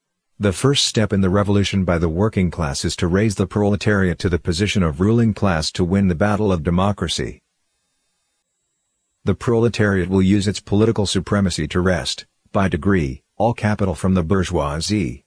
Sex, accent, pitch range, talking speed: male, American, 90-105 Hz, 170 wpm